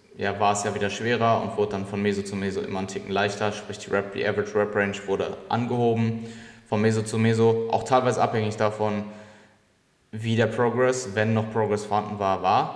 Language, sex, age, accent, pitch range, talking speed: German, male, 20-39, German, 100-115 Hz, 200 wpm